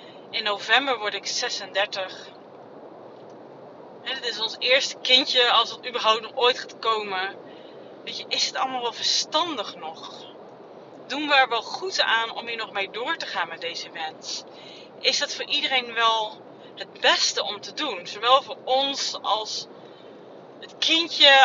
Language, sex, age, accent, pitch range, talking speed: Dutch, female, 30-49, Dutch, 205-275 Hz, 160 wpm